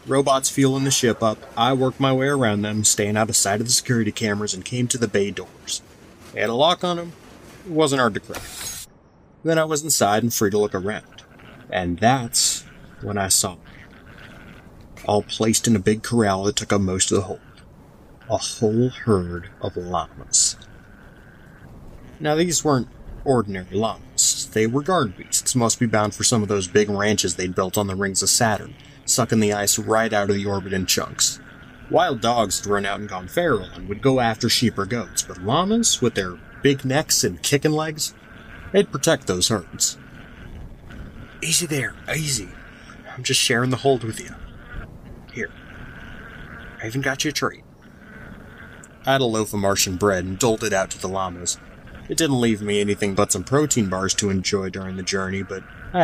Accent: American